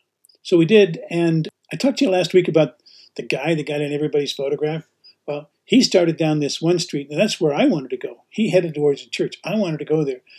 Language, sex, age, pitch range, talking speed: English, male, 50-69, 155-185 Hz, 250 wpm